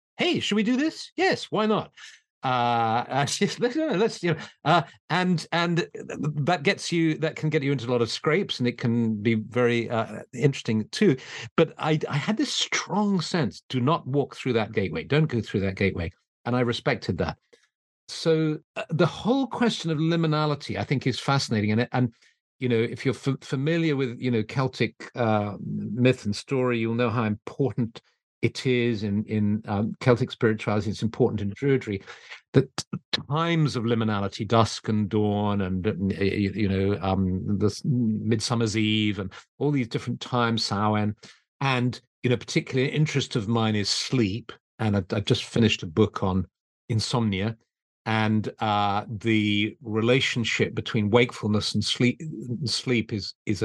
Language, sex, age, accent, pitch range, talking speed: English, male, 50-69, British, 110-145 Hz, 170 wpm